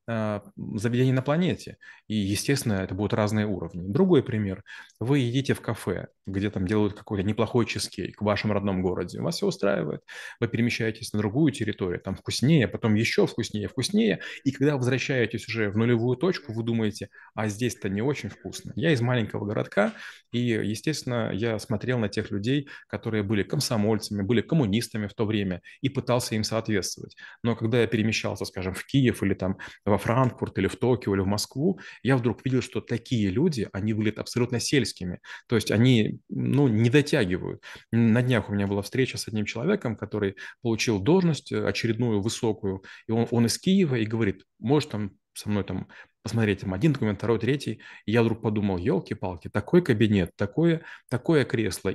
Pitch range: 105-125 Hz